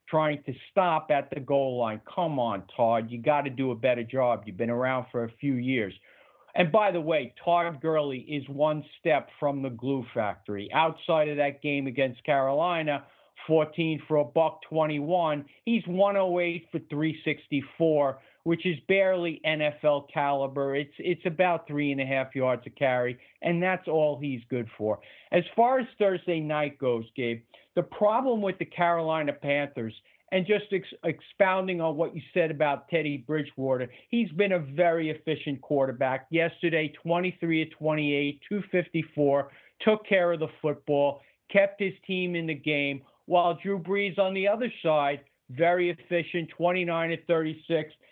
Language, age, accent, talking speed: English, 50-69, American, 160 wpm